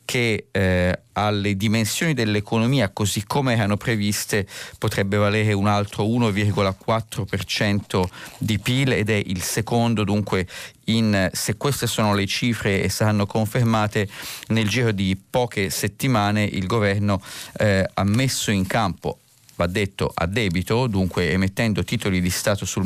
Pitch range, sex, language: 100-115 Hz, male, Italian